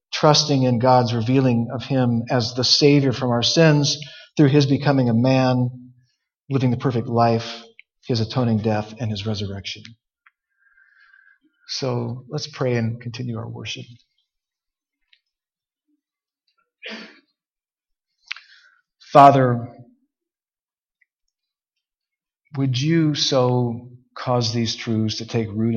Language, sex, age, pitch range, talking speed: English, male, 50-69, 115-150 Hz, 100 wpm